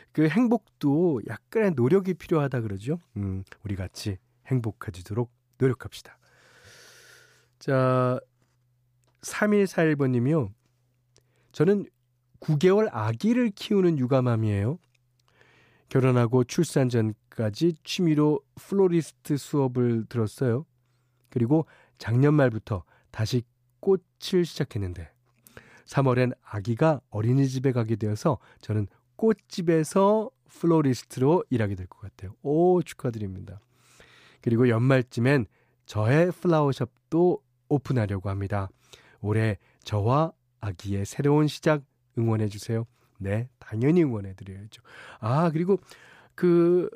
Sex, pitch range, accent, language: male, 115-155 Hz, native, Korean